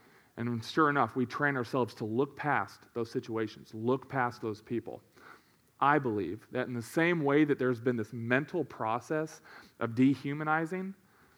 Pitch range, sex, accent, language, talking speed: 120-150 Hz, male, American, English, 160 wpm